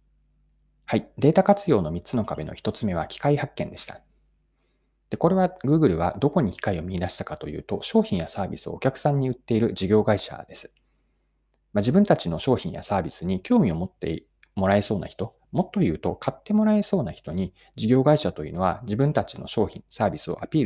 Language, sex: Japanese, male